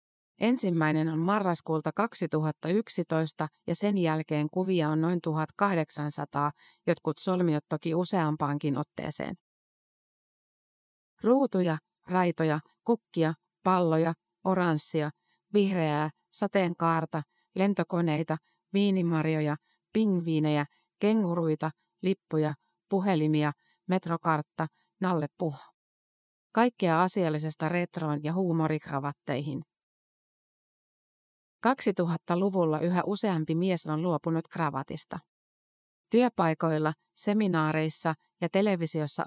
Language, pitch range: Finnish, 155-185 Hz